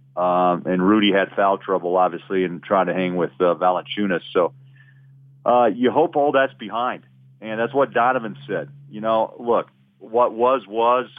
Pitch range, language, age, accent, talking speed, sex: 95-120 Hz, English, 40-59, American, 170 wpm, male